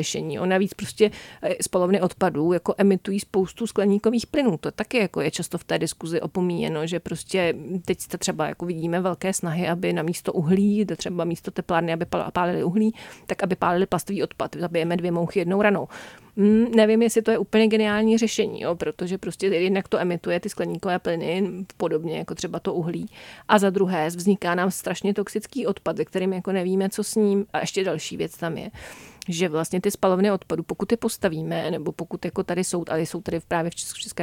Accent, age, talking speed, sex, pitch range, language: native, 40-59, 195 wpm, female, 170-200 Hz, Czech